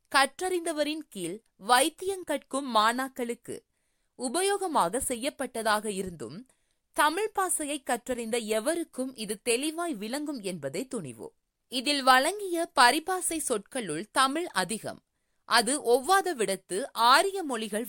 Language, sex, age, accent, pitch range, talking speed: Tamil, female, 20-39, native, 230-325 Hz, 90 wpm